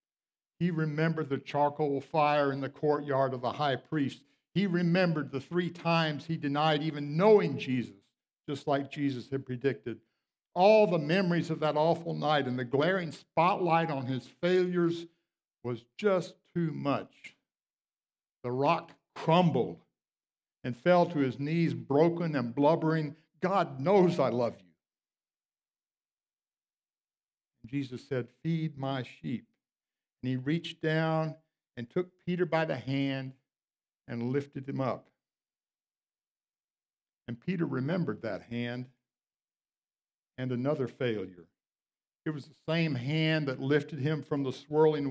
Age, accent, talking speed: 60-79, American, 130 wpm